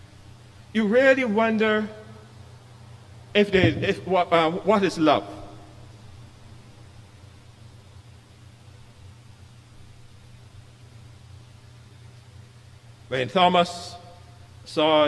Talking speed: 55 wpm